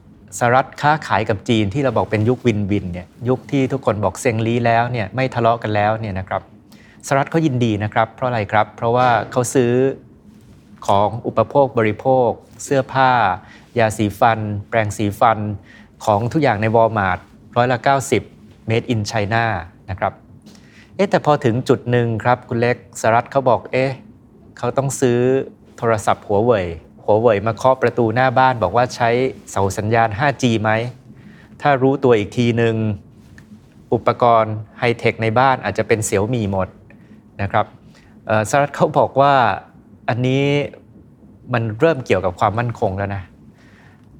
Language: Thai